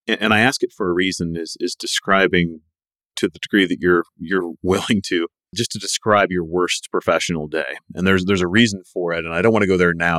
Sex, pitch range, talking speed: male, 85-100 Hz, 235 wpm